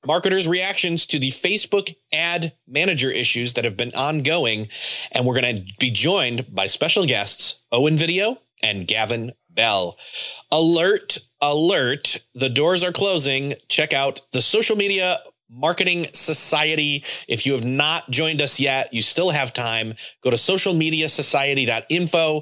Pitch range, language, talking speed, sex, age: 125-165 Hz, English, 140 wpm, male, 30-49